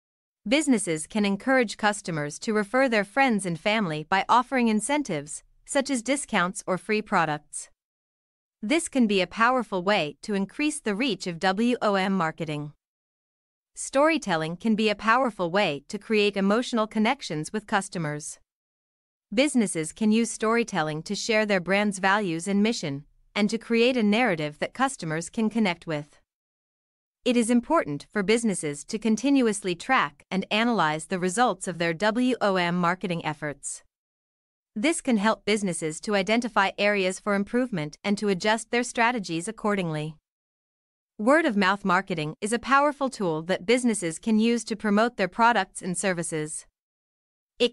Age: 30-49